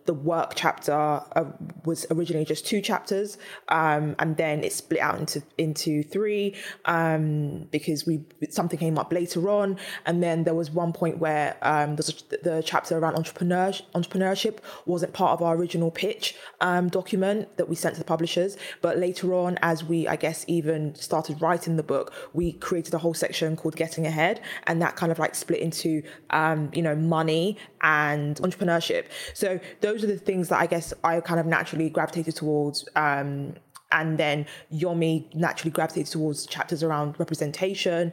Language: English